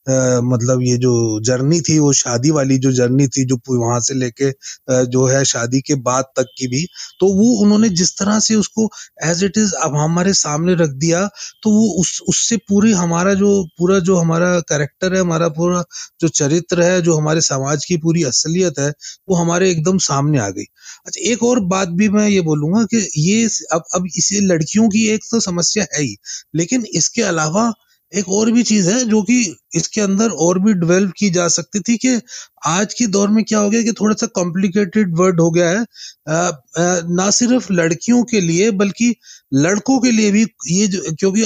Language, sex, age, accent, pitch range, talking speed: Hindi, male, 30-49, native, 160-210 Hz, 200 wpm